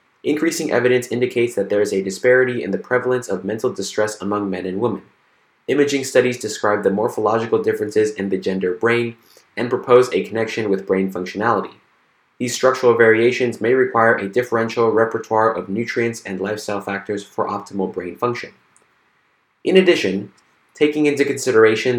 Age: 20-39